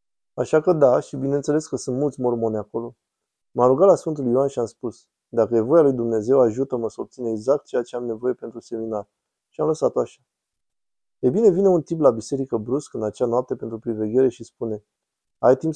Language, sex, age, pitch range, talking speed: Romanian, male, 20-39, 115-140 Hz, 205 wpm